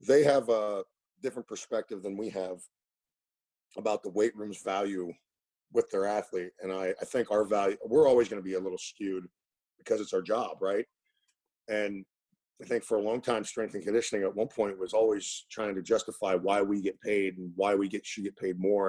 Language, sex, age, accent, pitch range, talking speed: English, male, 40-59, American, 100-135 Hz, 210 wpm